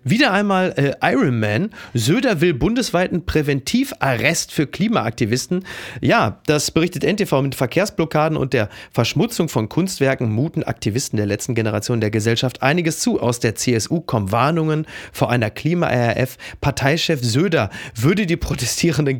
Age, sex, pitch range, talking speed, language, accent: 30-49, male, 115-160 Hz, 140 wpm, German, German